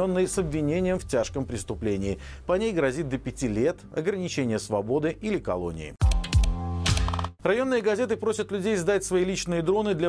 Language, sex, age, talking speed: Russian, male, 40-59, 145 wpm